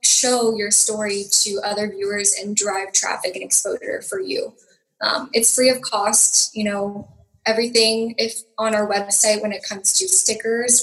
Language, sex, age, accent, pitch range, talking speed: English, female, 10-29, American, 200-230 Hz, 165 wpm